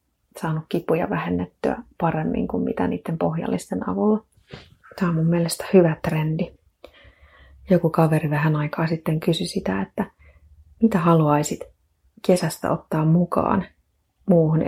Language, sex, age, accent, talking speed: Finnish, female, 30-49, native, 120 wpm